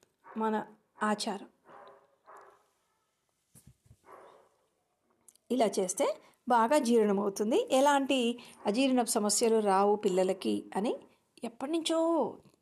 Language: Telugu